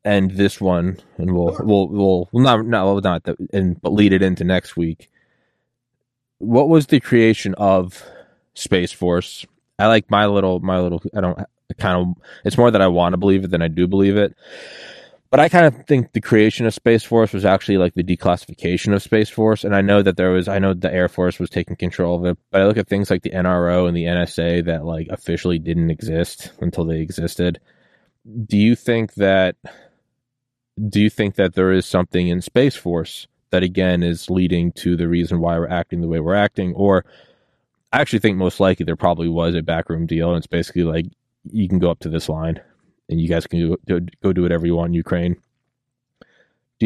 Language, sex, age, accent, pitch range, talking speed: English, male, 20-39, American, 85-100 Hz, 215 wpm